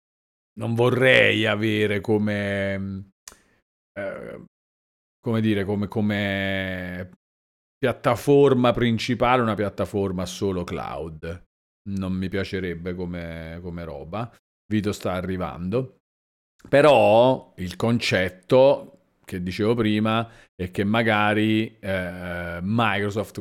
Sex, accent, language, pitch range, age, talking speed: male, native, Italian, 95-110 Hz, 40-59, 90 wpm